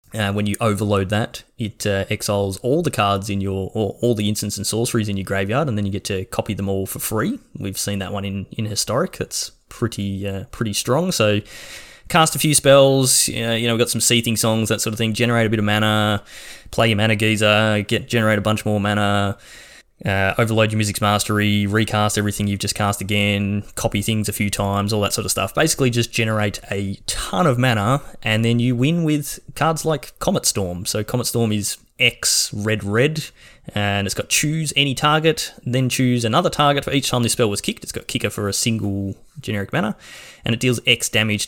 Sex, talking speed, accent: male, 220 wpm, Australian